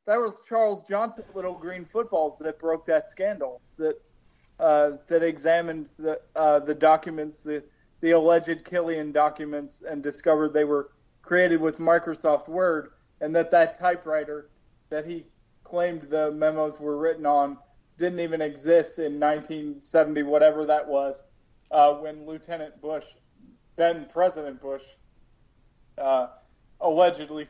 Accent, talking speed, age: American, 130 wpm, 20-39